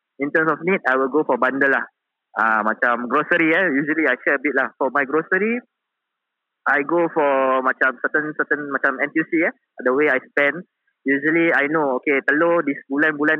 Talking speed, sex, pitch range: 195 wpm, male, 130-170 Hz